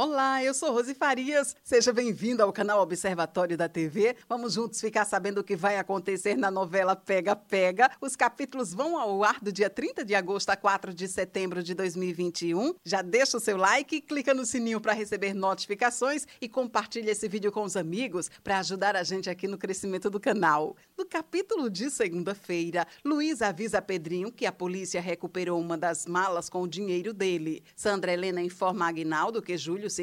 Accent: Brazilian